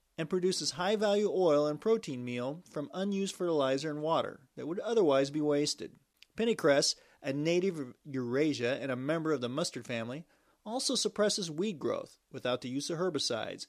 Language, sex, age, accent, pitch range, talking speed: English, male, 40-59, American, 140-190 Hz, 165 wpm